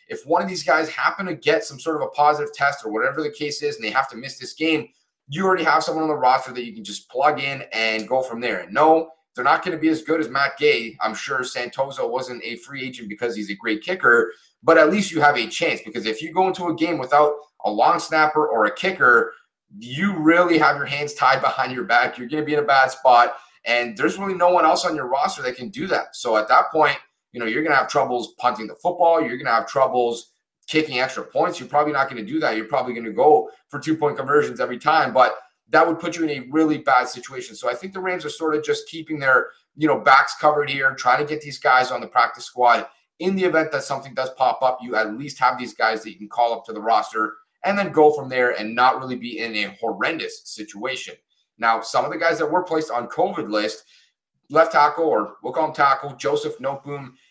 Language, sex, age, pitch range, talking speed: English, male, 30-49, 125-165 Hz, 260 wpm